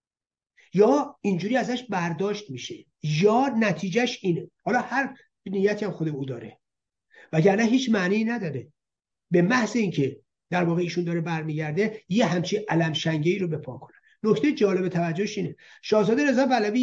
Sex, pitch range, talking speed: male, 160-220 Hz, 140 wpm